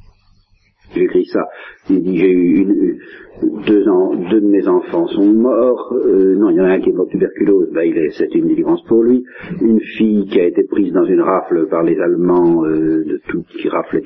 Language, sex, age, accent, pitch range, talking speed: French, male, 50-69, French, 330-370 Hz, 210 wpm